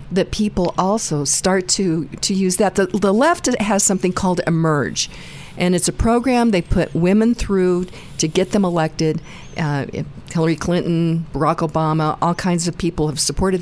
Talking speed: 165 wpm